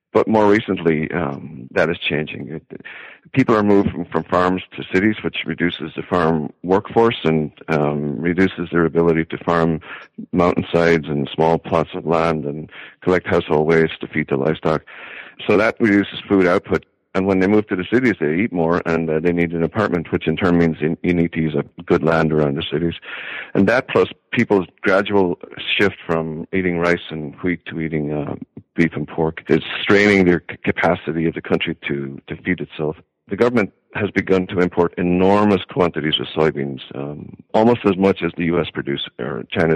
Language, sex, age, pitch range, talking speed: English, male, 50-69, 80-95 Hz, 190 wpm